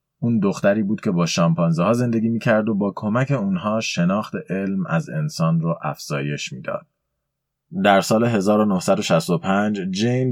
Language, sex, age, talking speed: Persian, male, 30-49, 140 wpm